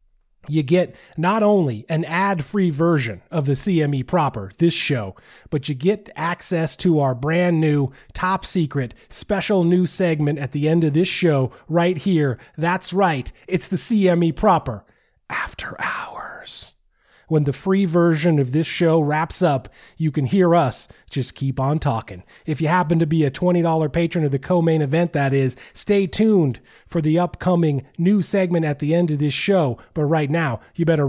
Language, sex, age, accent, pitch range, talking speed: English, male, 30-49, American, 135-175 Hz, 180 wpm